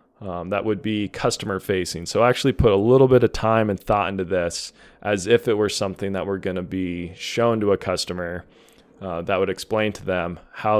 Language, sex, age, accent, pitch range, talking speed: English, male, 20-39, American, 95-115 Hz, 210 wpm